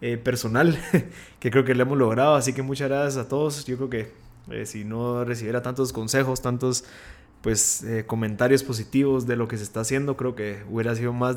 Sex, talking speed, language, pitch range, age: male, 205 wpm, Spanish, 120-145 Hz, 20-39